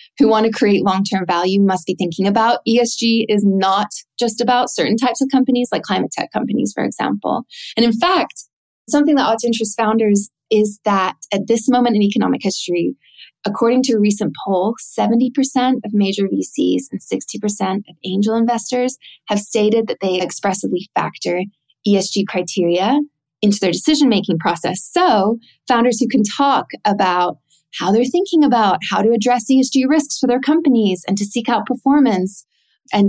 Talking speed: 165 wpm